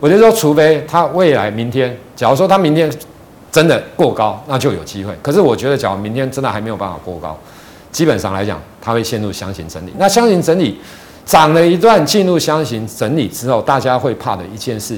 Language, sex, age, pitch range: Chinese, male, 50-69, 110-160 Hz